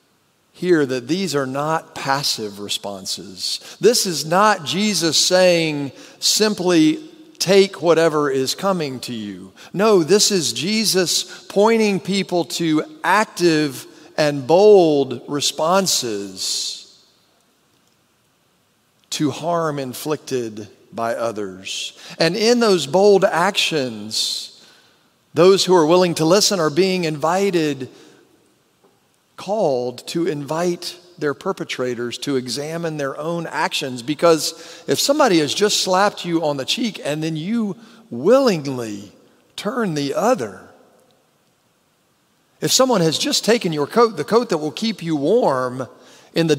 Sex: male